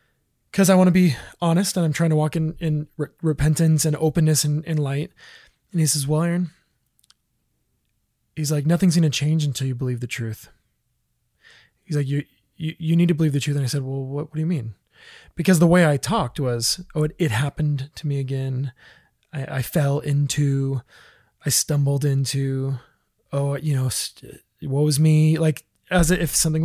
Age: 20-39